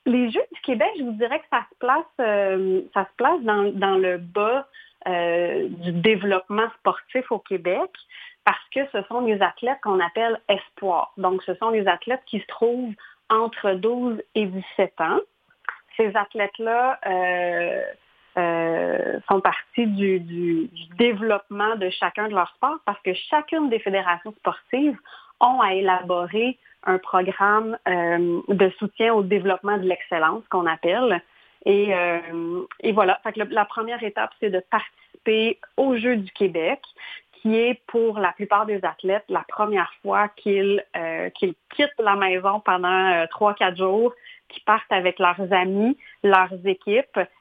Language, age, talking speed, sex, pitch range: French, 30-49, 160 wpm, female, 185-230 Hz